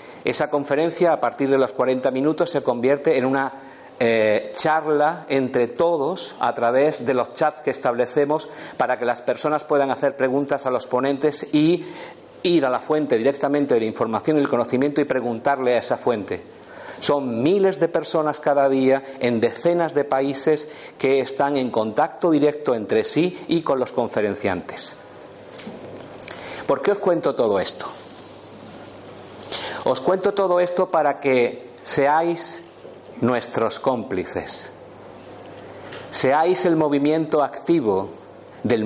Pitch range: 130-160 Hz